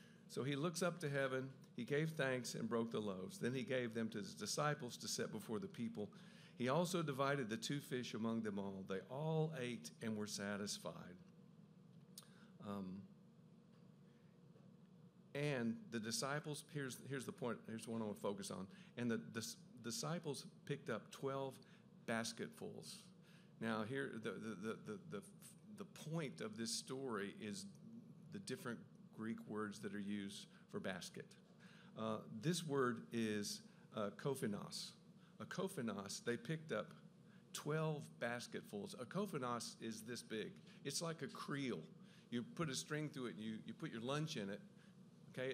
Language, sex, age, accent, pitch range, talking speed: English, male, 50-69, American, 120-185 Hz, 160 wpm